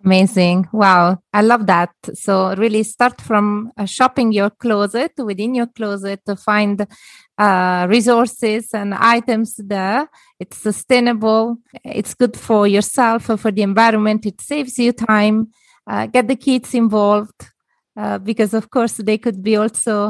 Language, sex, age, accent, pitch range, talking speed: English, female, 20-39, Italian, 200-235 Hz, 150 wpm